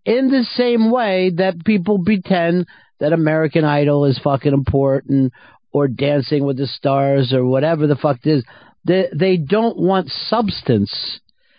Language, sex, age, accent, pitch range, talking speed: English, male, 50-69, American, 140-180 Hz, 150 wpm